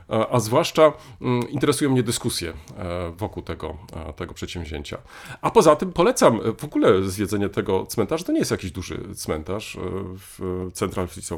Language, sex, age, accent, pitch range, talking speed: Polish, male, 40-59, native, 85-115 Hz, 135 wpm